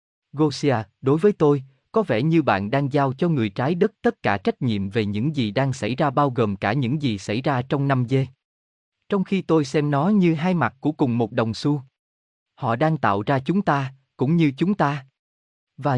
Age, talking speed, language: 20-39, 220 wpm, Vietnamese